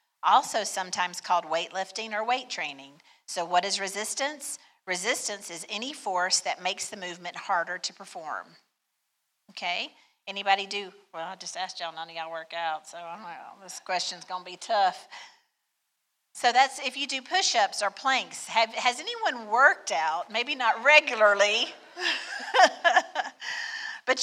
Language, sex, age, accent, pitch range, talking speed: English, female, 50-69, American, 190-255 Hz, 155 wpm